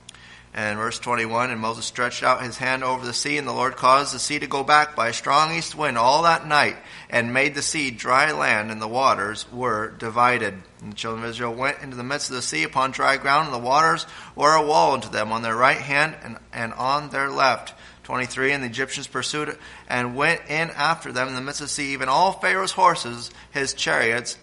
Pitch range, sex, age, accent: 115-145 Hz, male, 30-49, American